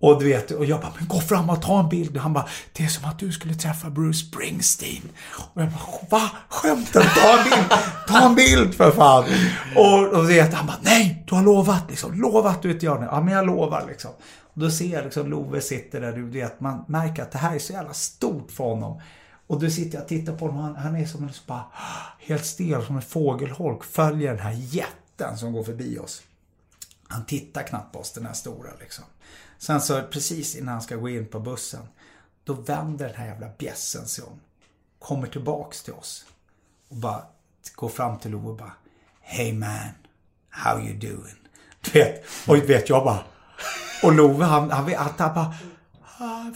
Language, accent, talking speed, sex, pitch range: Swedish, native, 210 wpm, male, 115-160 Hz